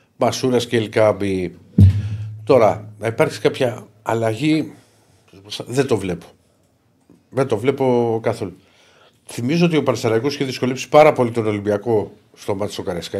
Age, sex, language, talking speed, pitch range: 50-69, male, Greek, 125 wpm, 95-120 Hz